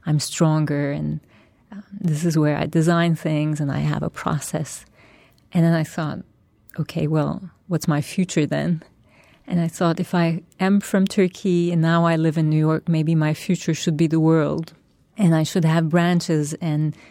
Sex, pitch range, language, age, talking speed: female, 150-175 Hz, English, 30-49, 185 wpm